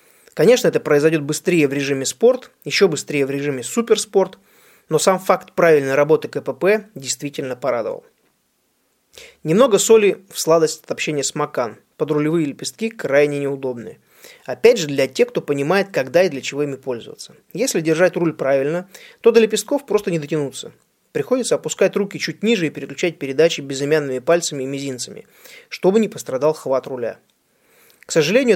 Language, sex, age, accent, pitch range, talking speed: Russian, male, 20-39, native, 145-210 Hz, 155 wpm